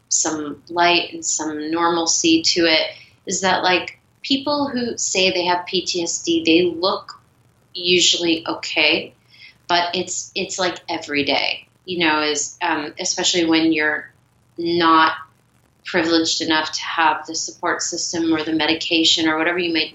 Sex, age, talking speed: female, 30-49, 145 wpm